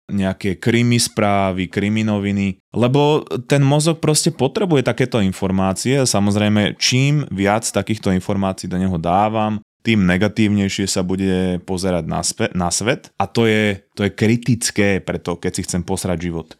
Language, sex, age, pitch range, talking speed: Slovak, male, 20-39, 90-110 Hz, 145 wpm